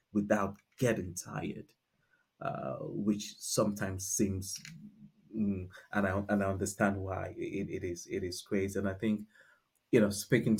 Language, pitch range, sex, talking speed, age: English, 100-160 Hz, male, 145 wpm, 30-49